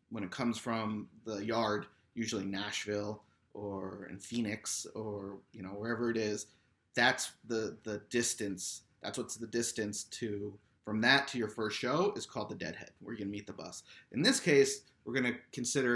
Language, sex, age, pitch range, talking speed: English, male, 30-49, 105-130 Hz, 185 wpm